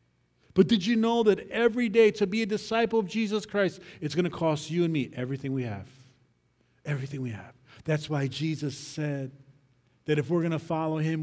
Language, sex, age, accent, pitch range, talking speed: English, male, 40-59, American, 145-190 Hz, 205 wpm